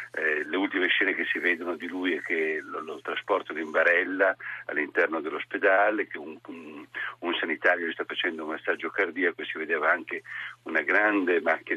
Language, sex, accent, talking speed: Italian, male, native, 180 wpm